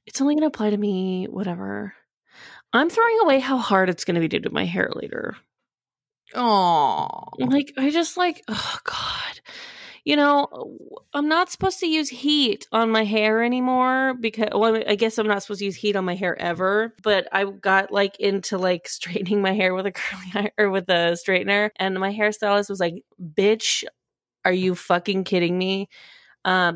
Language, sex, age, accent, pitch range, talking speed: English, female, 20-39, American, 185-235 Hz, 180 wpm